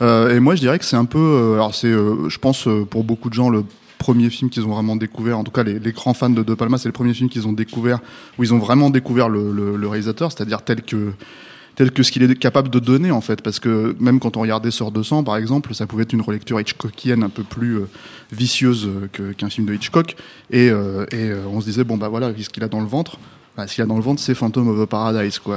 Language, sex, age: French, male, 20-39